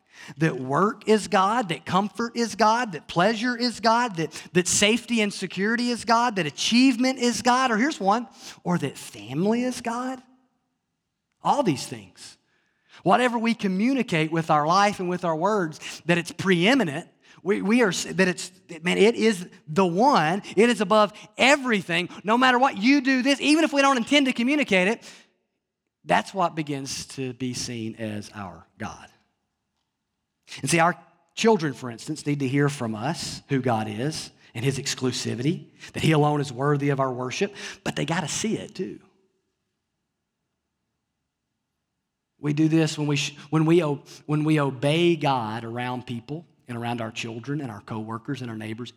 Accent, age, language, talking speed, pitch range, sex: American, 40-59, English, 165 wpm, 135-215 Hz, male